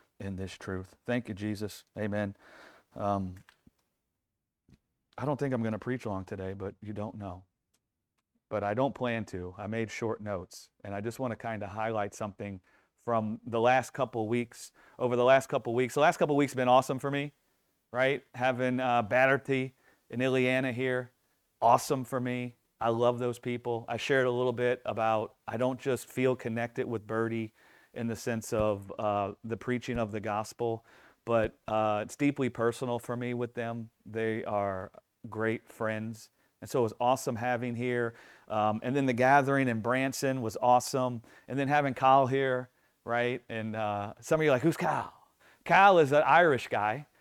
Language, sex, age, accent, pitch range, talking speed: English, male, 30-49, American, 110-130 Hz, 185 wpm